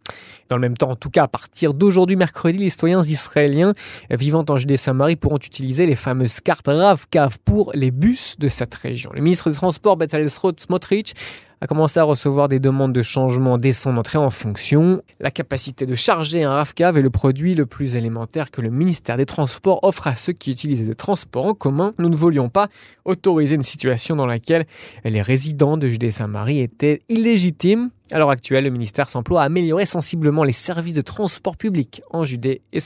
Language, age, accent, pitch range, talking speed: French, 20-39, French, 130-175 Hz, 195 wpm